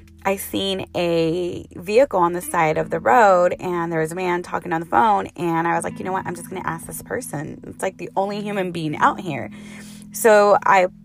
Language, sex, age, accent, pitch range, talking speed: English, female, 20-39, American, 160-190 Hz, 235 wpm